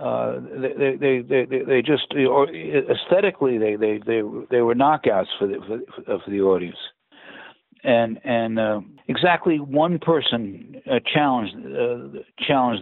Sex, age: male, 60-79